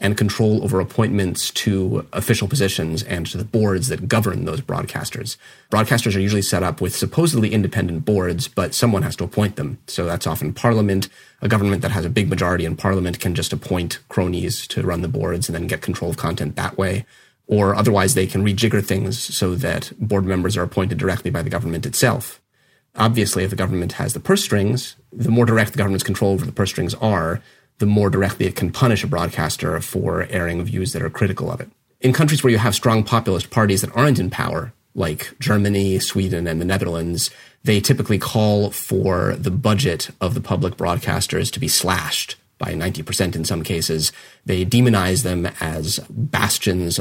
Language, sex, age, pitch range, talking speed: English, male, 30-49, 95-115 Hz, 195 wpm